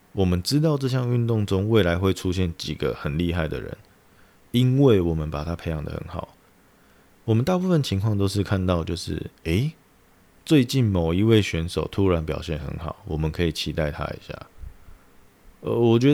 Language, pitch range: Chinese, 85-105 Hz